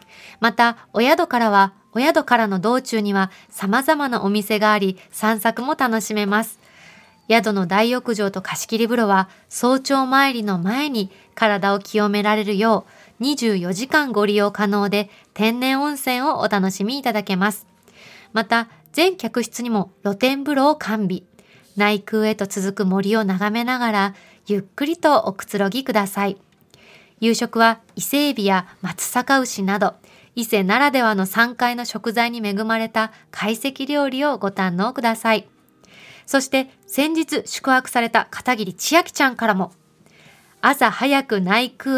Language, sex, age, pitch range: Japanese, female, 20-39, 205-255 Hz